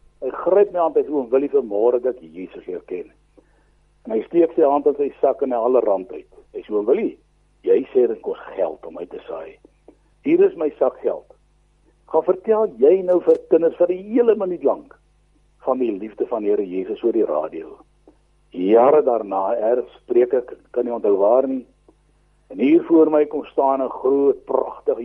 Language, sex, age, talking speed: English, male, 60-79, 195 wpm